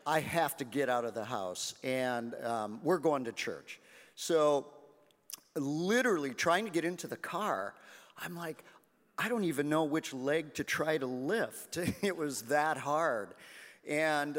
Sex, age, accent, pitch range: male, 40-59, American, 135-170 Hz